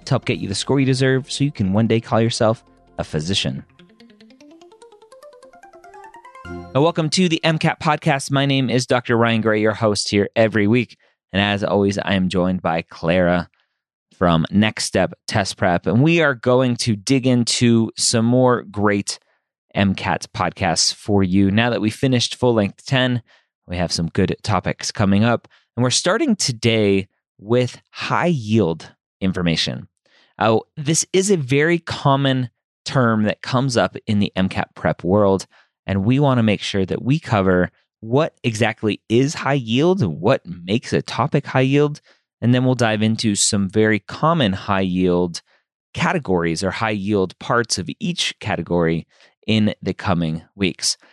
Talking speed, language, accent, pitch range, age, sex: 165 wpm, English, American, 95-135 Hz, 30-49, male